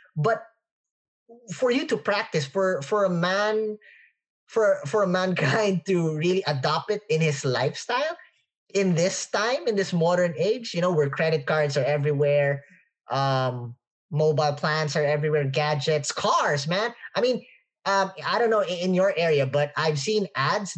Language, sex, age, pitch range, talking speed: English, male, 20-39, 145-205 Hz, 160 wpm